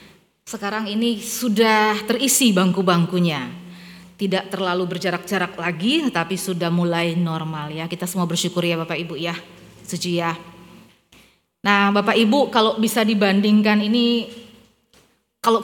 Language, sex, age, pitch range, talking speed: Indonesian, female, 20-39, 180-215 Hz, 120 wpm